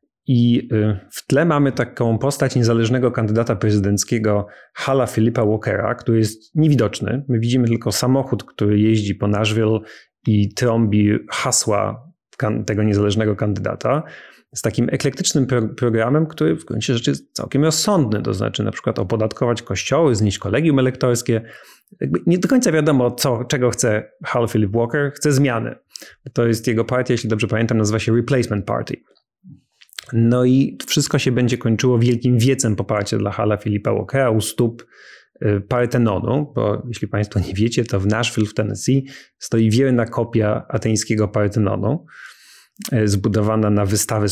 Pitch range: 105-125 Hz